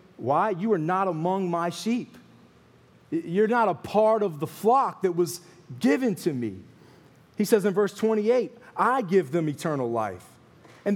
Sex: male